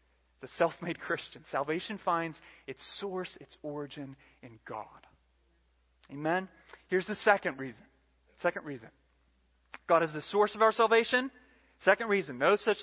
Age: 30-49